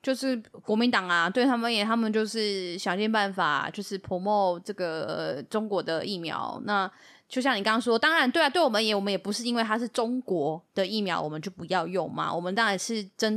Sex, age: female, 20-39